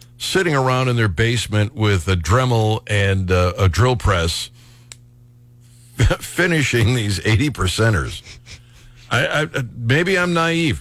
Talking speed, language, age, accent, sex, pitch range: 120 wpm, English, 60-79, American, male, 100-130 Hz